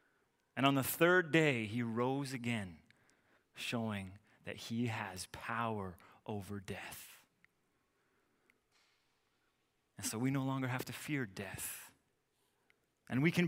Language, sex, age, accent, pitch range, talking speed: English, male, 30-49, American, 125-165 Hz, 120 wpm